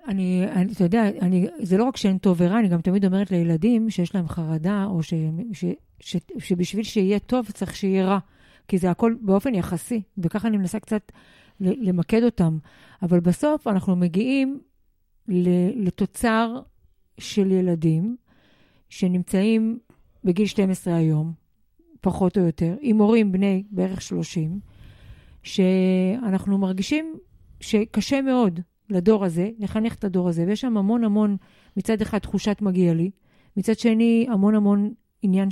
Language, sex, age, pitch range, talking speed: Hebrew, female, 50-69, 180-225 Hz, 140 wpm